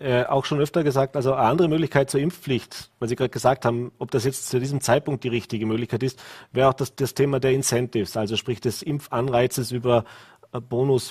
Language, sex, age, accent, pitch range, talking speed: German, male, 30-49, German, 125-150 Hz, 210 wpm